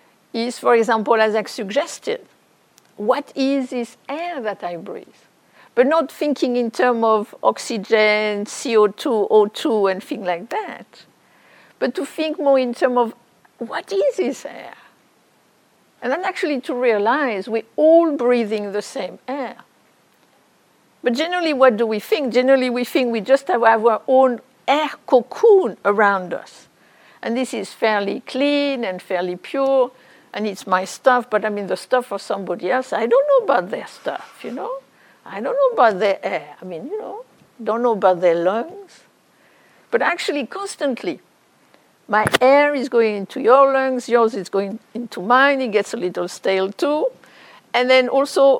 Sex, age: female, 60-79